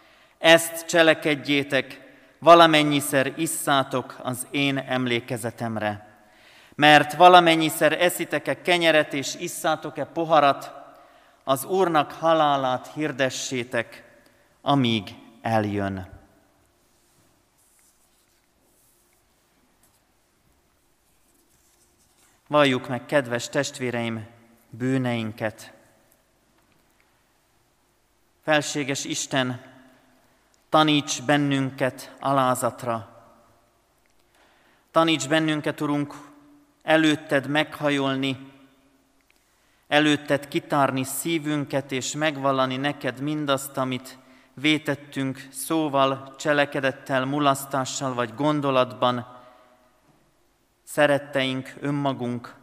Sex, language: male, Hungarian